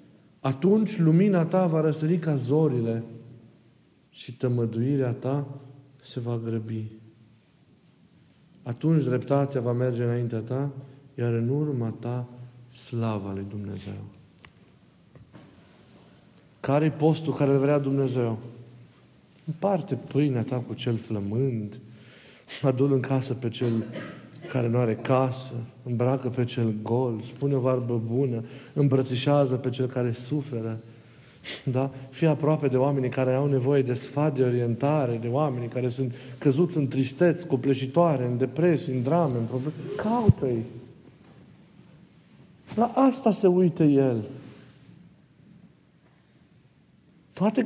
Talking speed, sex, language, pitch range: 115 wpm, male, Romanian, 120-150 Hz